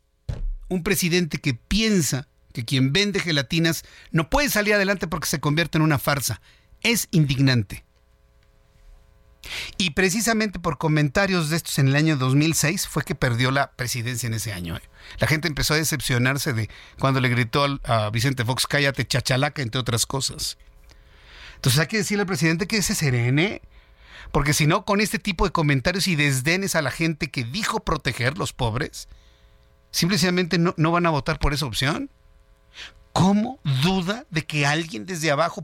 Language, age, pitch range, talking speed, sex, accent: Spanish, 50-69, 130-180 Hz, 165 wpm, male, Mexican